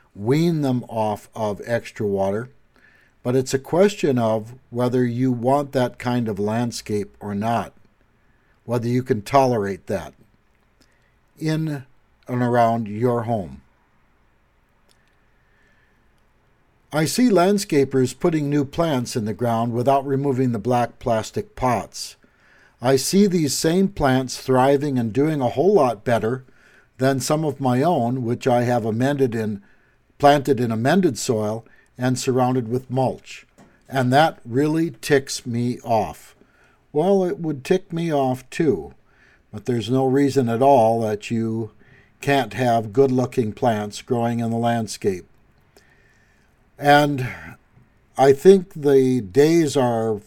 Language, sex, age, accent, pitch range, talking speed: English, male, 60-79, American, 115-140 Hz, 130 wpm